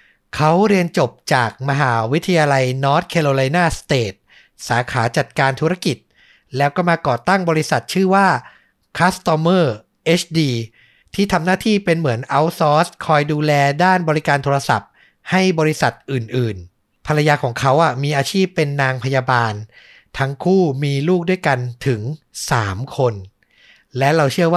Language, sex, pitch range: Thai, male, 130-165 Hz